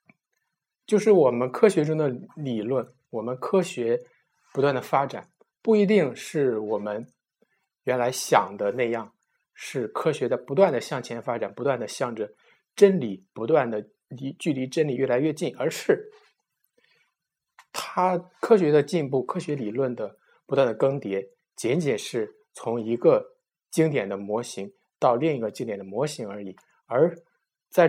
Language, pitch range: Chinese, 125-210 Hz